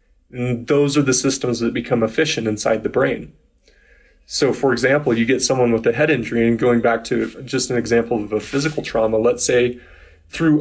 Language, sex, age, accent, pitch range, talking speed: English, male, 30-49, American, 115-135 Hz, 200 wpm